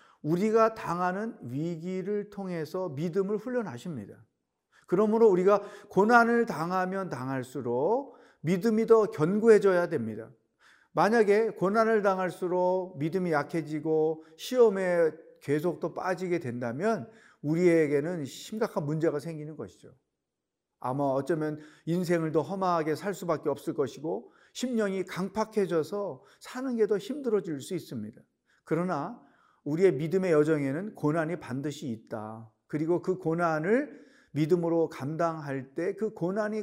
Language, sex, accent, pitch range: Korean, male, native, 160-205 Hz